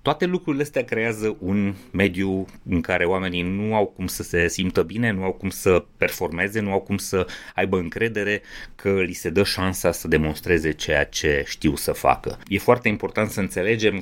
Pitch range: 90-115 Hz